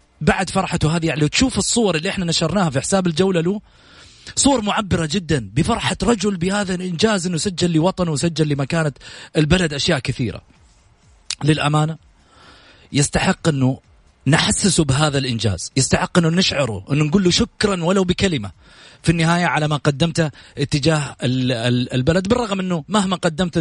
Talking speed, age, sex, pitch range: 140 wpm, 30-49, male, 125-170 Hz